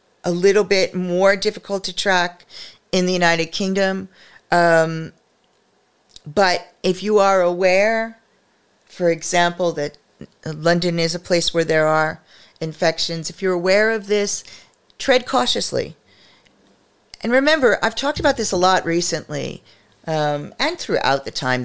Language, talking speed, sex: English, 135 wpm, female